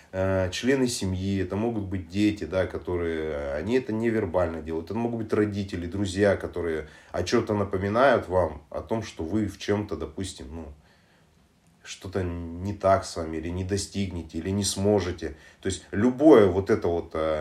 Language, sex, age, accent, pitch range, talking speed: Russian, male, 30-49, native, 85-110 Hz, 160 wpm